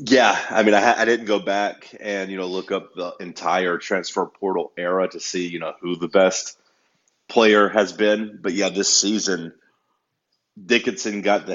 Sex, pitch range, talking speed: male, 90-100 Hz, 180 wpm